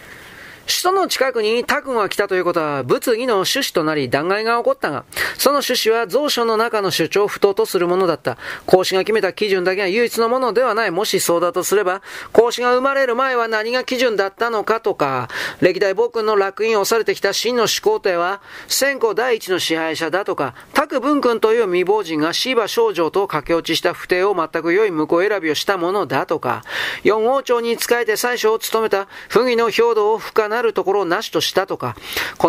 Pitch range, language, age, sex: 190-295 Hz, Japanese, 40-59, male